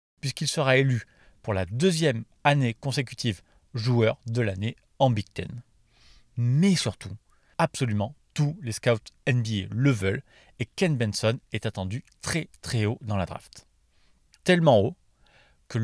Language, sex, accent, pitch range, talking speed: French, male, French, 100-145 Hz, 140 wpm